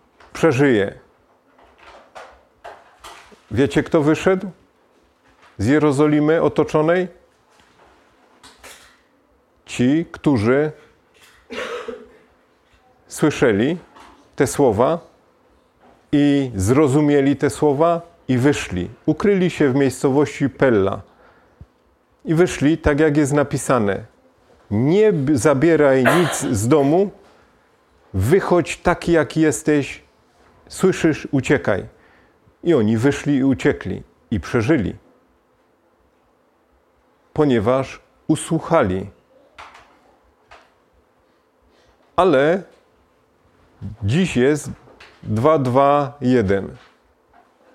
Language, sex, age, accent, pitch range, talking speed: Polish, male, 40-59, native, 125-160 Hz, 65 wpm